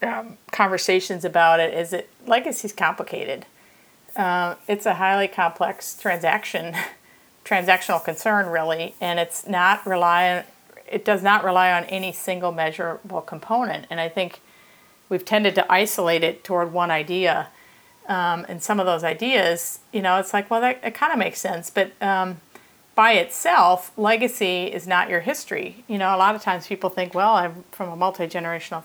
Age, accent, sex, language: 40-59, American, female, English